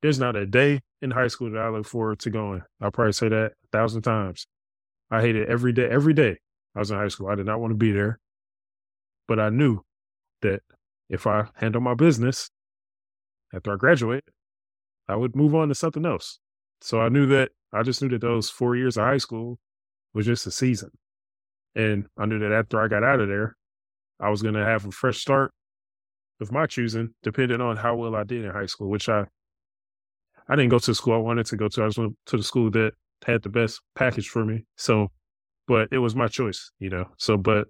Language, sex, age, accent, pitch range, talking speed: English, male, 20-39, American, 100-125 Hz, 225 wpm